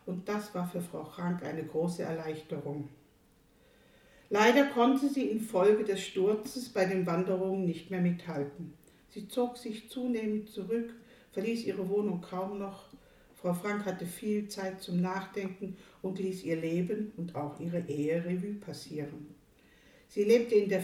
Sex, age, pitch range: female, 60-79, 170-210 Hz